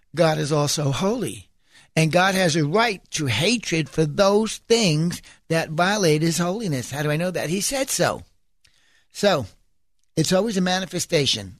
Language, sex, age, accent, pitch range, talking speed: English, male, 60-79, American, 140-185 Hz, 160 wpm